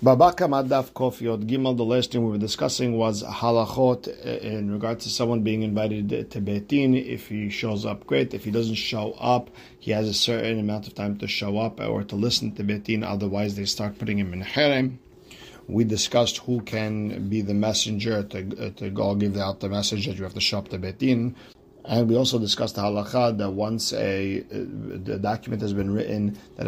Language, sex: English, male